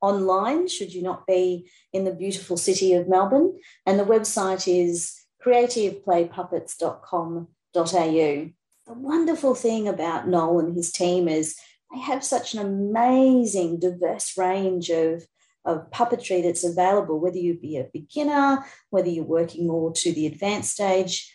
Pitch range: 170-205 Hz